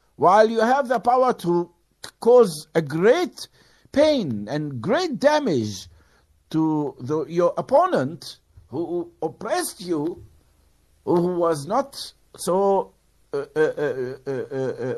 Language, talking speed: English, 110 wpm